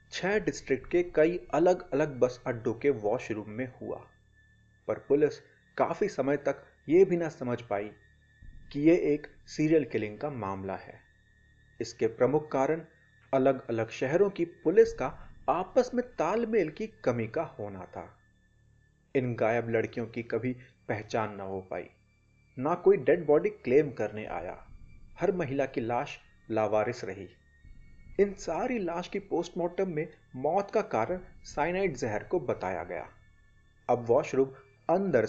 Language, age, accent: Hindi, 30-49, native